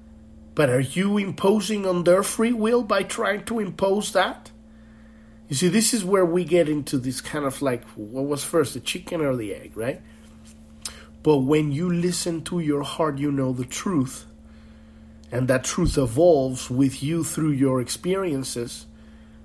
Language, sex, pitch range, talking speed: English, male, 110-165 Hz, 165 wpm